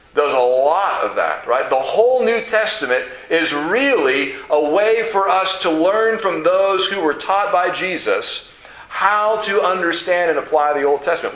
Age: 40-59